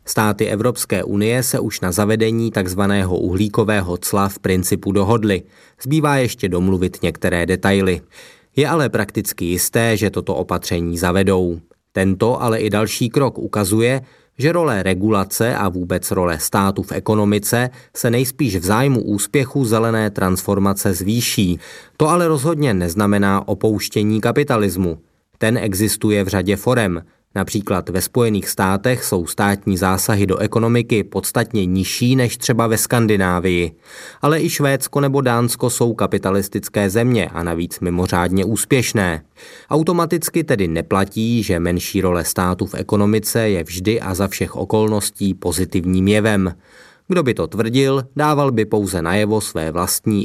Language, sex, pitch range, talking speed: Czech, male, 95-115 Hz, 135 wpm